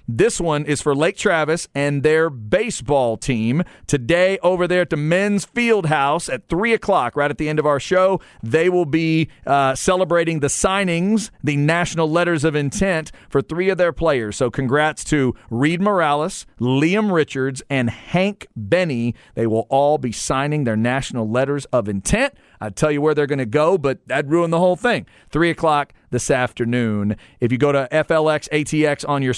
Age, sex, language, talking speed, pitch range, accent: 40-59, male, English, 185 wpm, 125-160 Hz, American